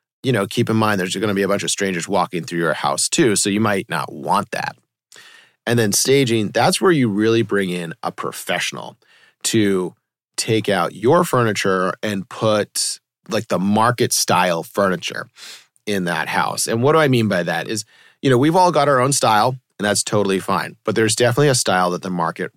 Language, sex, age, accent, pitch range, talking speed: English, male, 30-49, American, 100-130 Hz, 205 wpm